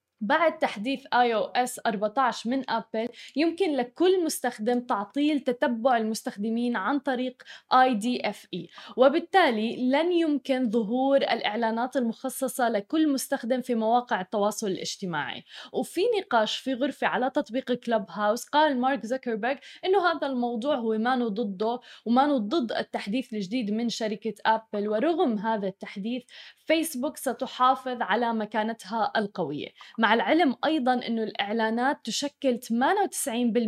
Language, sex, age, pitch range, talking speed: Arabic, female, 10-29, 225-280 Hz, 115 wpm